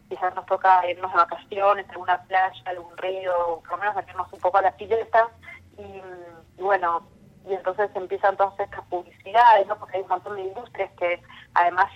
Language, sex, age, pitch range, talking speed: Spanish, female, 20-39, 175-205 Hz, 185 wpm